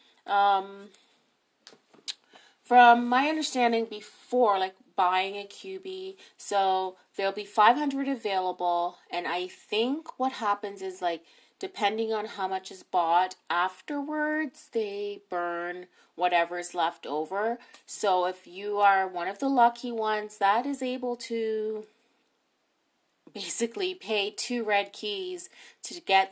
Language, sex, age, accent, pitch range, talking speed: English, female, 30-49, American, 180-245 Hz, 125 wpm